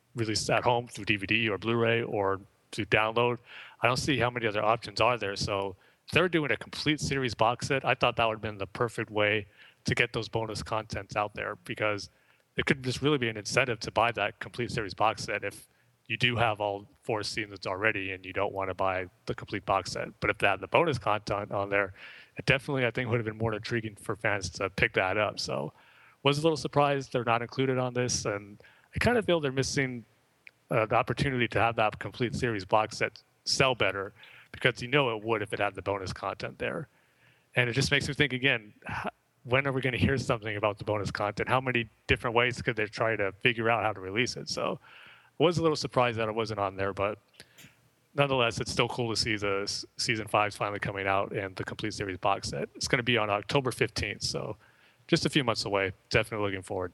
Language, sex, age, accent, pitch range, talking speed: English, male, 30-49, American, 105-130 Hz, 230 wpm